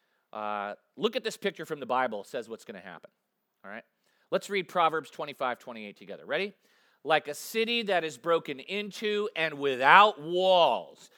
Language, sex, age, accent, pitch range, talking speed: English, male, 40-59, American, 165-220 Hz, 165 wpm